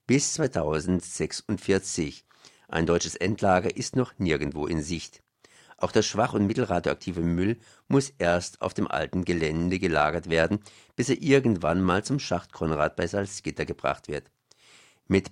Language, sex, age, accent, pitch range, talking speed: German, male, 50-69, German, 85-110 Hz, 140 wpm